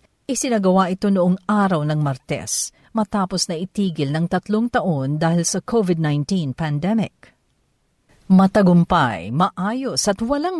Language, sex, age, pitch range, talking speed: Filipino, female, 50-69, 165-225 Hz, 115 wpm